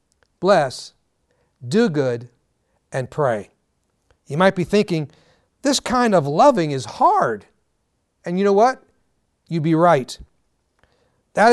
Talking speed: 120 wpm